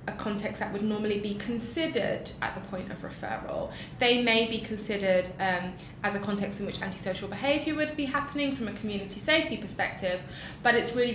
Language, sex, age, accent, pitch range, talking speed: English, female, 20-39, British, 190-235 Hz, 190 wpm